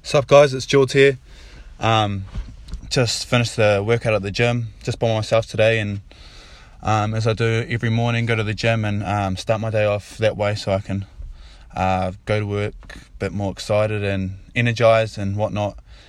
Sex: male